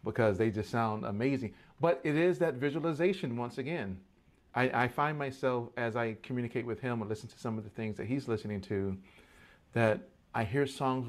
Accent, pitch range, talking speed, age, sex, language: American, 110-135 Hz, 195 wpm, 40-59, male, English